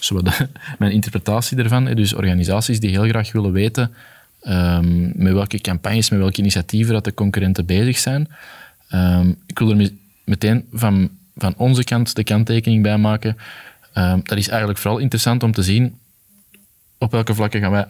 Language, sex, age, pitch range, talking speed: Dutch, male, 20-39, 100-120 Hz, 150 wpm